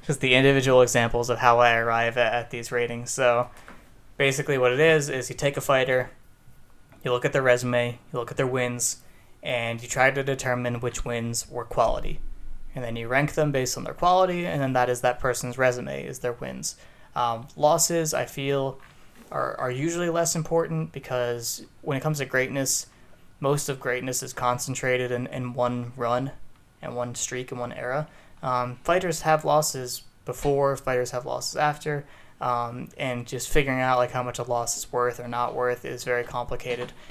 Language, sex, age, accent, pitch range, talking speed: English, male, 20-39, American, 120-140 Hz, 190 wpm